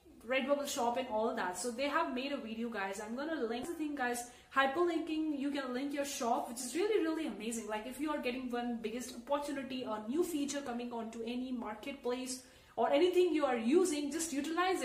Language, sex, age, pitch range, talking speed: English, female, 30-49, 235-290 Hz, 215 wpm